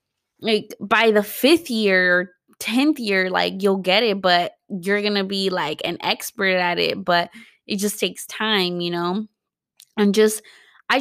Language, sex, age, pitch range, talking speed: English, female, 20-39, 180-215 Hz, 165 wpm